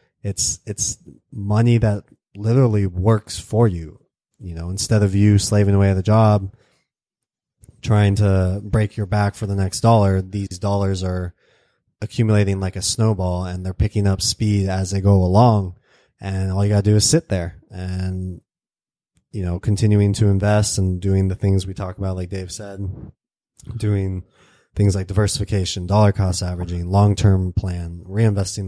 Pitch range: 95-110 Hz